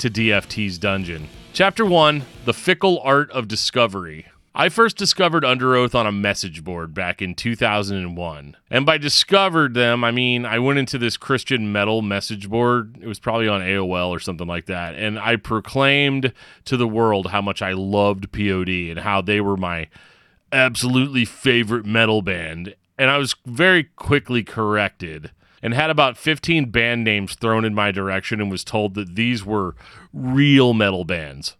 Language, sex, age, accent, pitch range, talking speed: English, male, 30-49, American, 100-130 Hz, 170 wpm